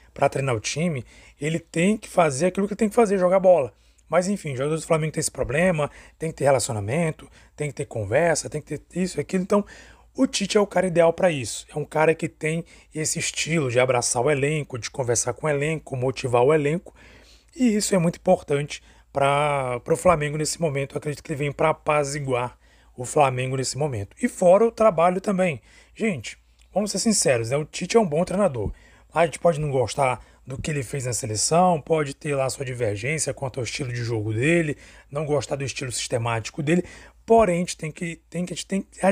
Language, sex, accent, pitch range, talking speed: Portuguese, male, Brazilian, 135-180 Hz, 205 wpm